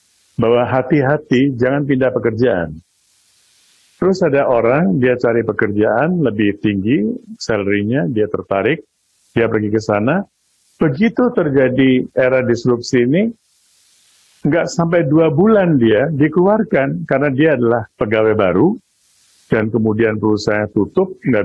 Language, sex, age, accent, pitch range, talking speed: Indonesian, male, 50-69, native, 105-145 Hz, 115 wpm